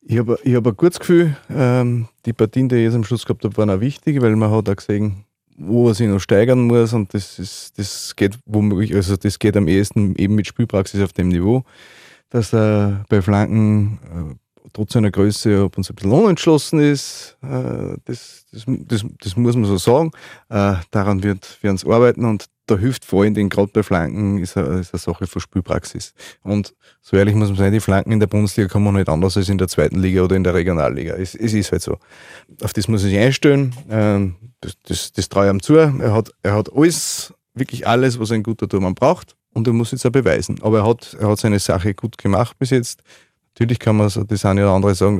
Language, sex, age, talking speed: German, male, 30-49, 215 wpm